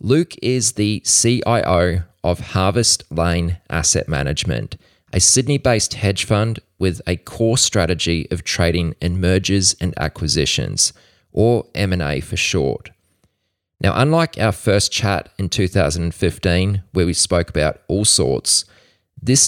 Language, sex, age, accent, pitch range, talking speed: English, male, 20-39, Australian, 90-115 Hz, 125 wpm